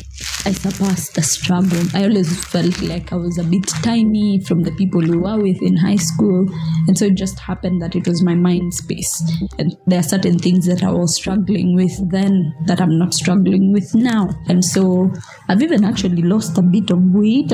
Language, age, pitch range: English, 20-39, 170-200 Hz